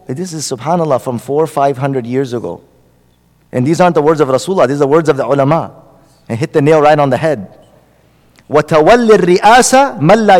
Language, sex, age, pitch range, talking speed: English, male, 40-59, 140-180 Hz, 195 wpm